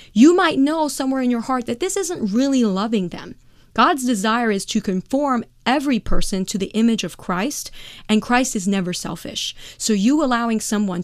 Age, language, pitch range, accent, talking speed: 30-49, English, 185-225 Hz, American, 185 wpm